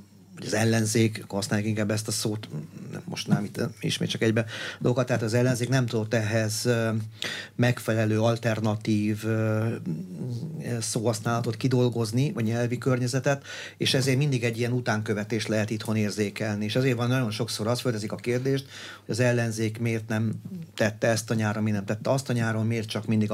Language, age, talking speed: Hungarian, 40-59, 165 wpm